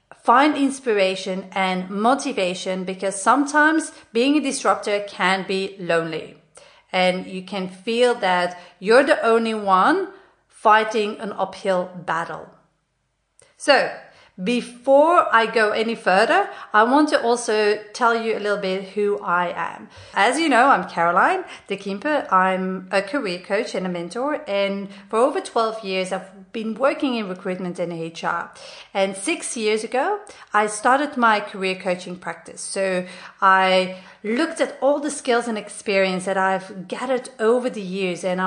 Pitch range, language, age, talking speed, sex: 190-265 Hz, English, 40-59, 150 wpm, female